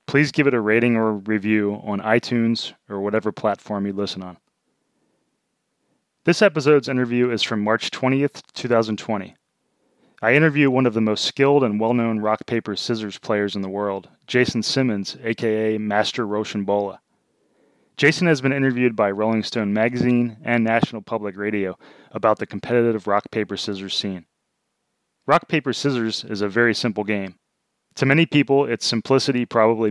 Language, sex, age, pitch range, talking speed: English, male, 30-49, 105-125 Hz, 155 wpm